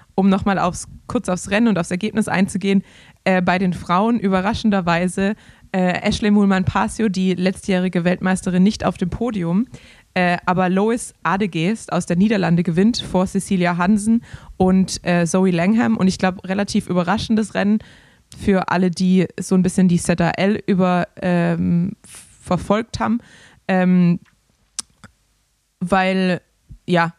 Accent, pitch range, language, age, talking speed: German, 180-200 Hz, German, 20-39, 135 wpm